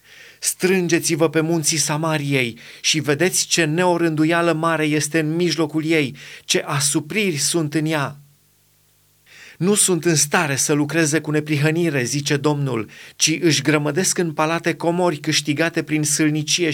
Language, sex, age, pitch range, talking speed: Romanian, male, 30-49, 140-160 Hz, 135 wpm